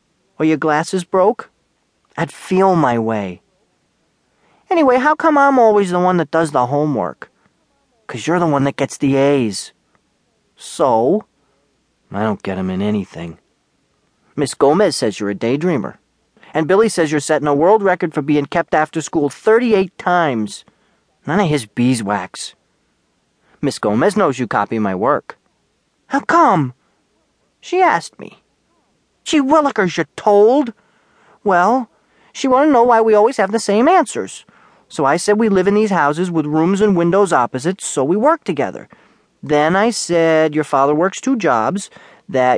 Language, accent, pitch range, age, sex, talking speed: English, American, 145-215 Hz, 40-59, male, 160 wpm